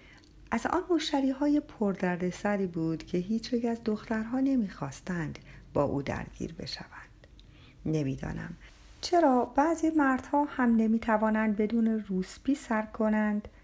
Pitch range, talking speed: 170-235 Hz, 115 wpm